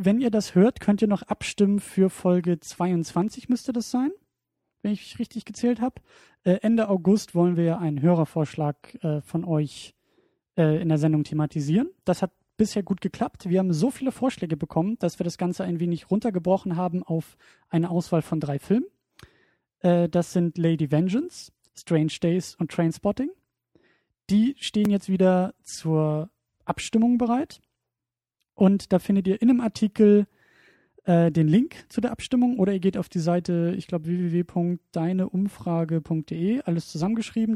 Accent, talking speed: German, 160 wpm